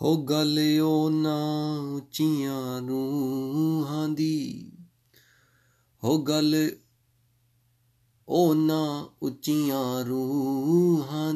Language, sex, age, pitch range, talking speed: Punjabi, male, 30-49, 120-150 Hz, 70 wpm